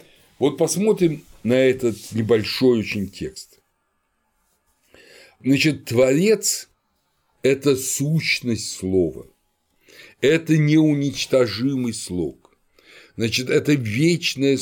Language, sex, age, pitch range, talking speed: Russian, male, 60-79, 105-140 Hz, 75 wpm